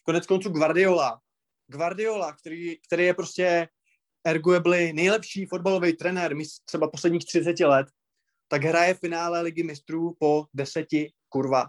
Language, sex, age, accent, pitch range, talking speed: Czech, male, 20-39, native, 155-185 Hz, 125 wpm